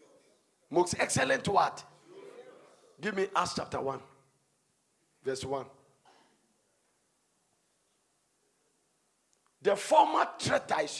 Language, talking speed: English, 70 wpm